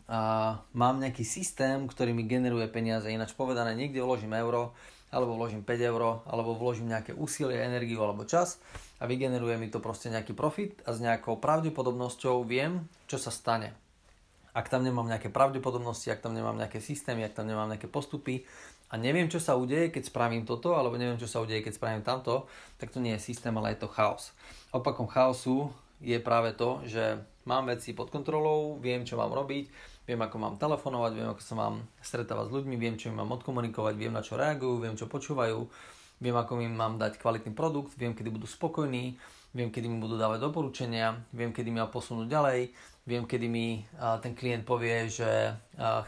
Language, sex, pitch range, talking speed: Slovak, male, 115-130 Hz, 195 wpm